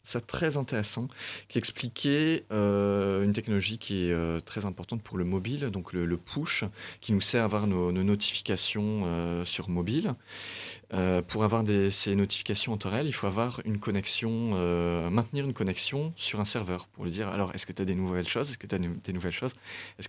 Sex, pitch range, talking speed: male, 95-120 Hz, 210 wpm